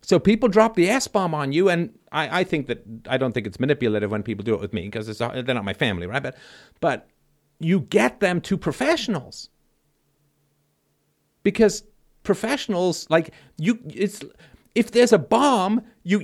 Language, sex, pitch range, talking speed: English, male, 150-215 Hz, 175 wpm